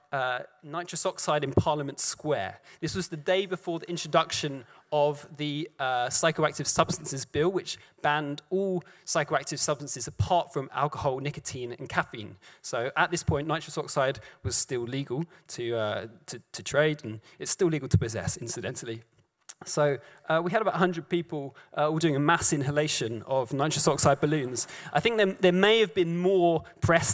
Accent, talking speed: British, 170 wpm